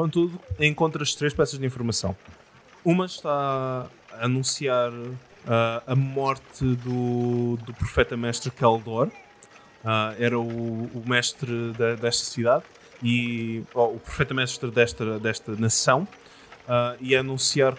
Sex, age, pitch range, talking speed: male, 20-39, 120-140 Hz, 125 wpm